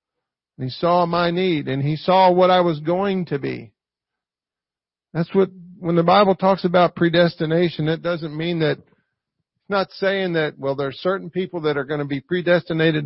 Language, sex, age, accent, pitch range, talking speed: English, male, 50-69, American, 150-190 Hz, 185 wpm